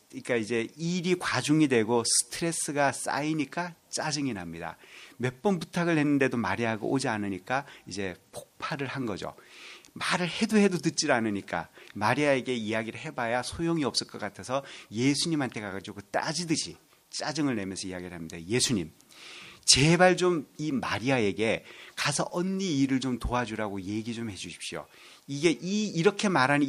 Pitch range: 110-160 Hz